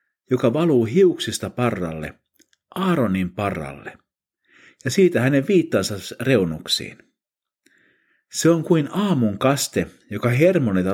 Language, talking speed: Finnish, 100 wpm